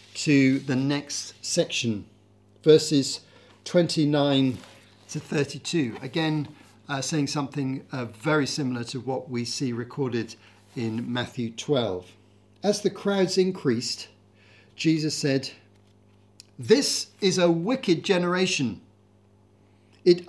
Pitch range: 110-170 Hz